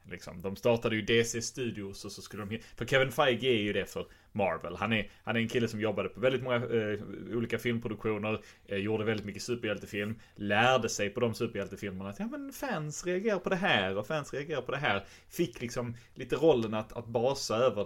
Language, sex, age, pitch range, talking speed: English, male, 30-49, 100-130 Hz, 215 wpm